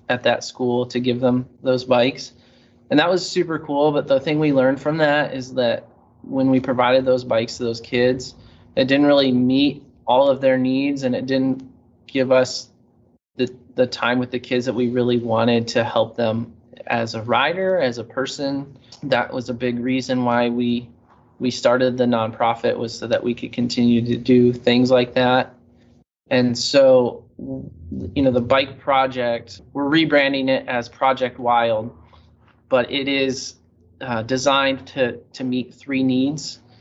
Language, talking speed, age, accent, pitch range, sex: English, 175 wpm, 20-39, American, 120-135 Hz, male